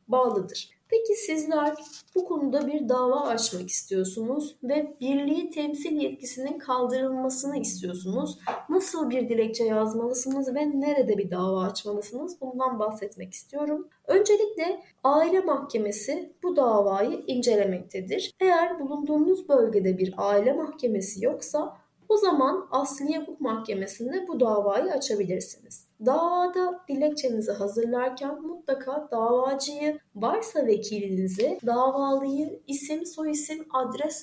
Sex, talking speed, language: female, 100 wpm, Turkish